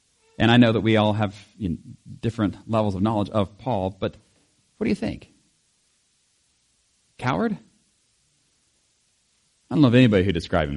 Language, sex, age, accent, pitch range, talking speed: English, male, 40-59, American, 110-140 Hz, 155 wpm